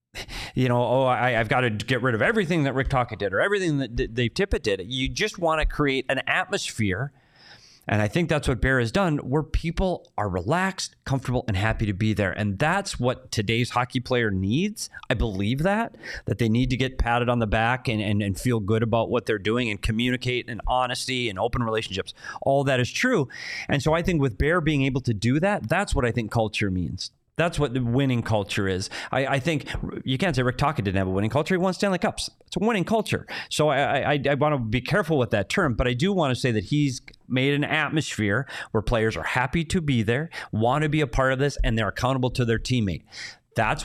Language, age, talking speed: English, 30-49, 235 wpm